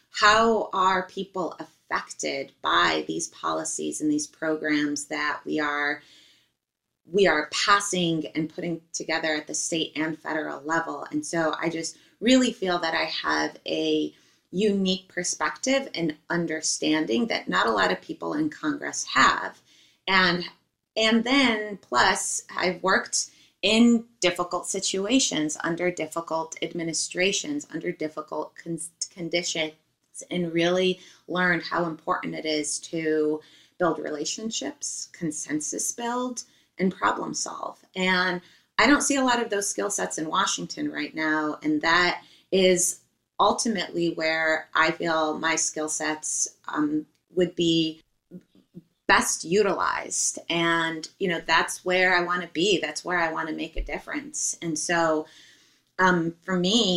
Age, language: 20-39, English